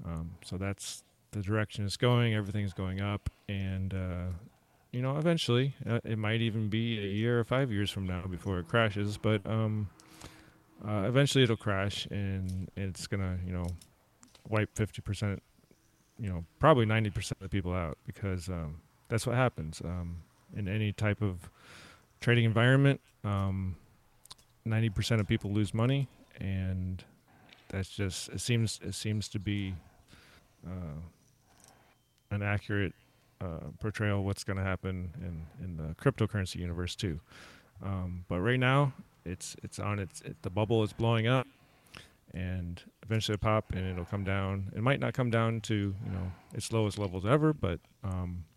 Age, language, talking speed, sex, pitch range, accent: 30-49, English, 165 wpm, male, 95-115 Hz, American